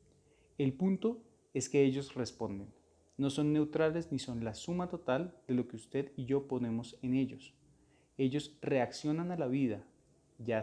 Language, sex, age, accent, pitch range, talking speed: Spanish, male, 30-49, Colombian, 115-145 Hz, 165 wpm